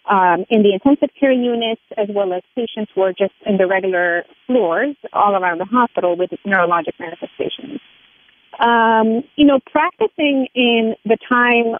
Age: 30-49